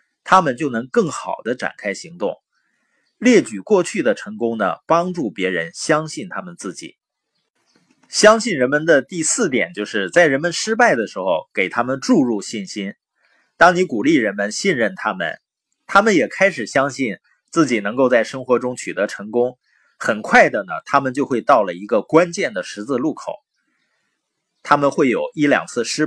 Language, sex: Chinese, male